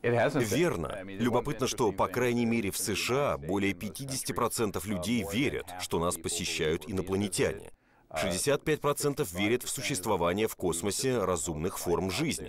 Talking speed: 120 wpm